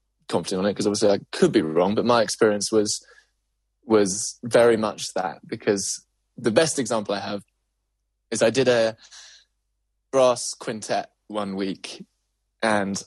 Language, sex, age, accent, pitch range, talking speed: English, male, 20-39, British, 100-125 Hz, 145 wpm